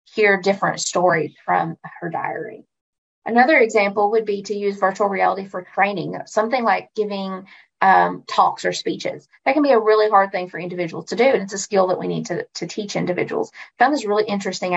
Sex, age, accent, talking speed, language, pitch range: female, 30-49, American, 200 wpm, English, 190-220 Hz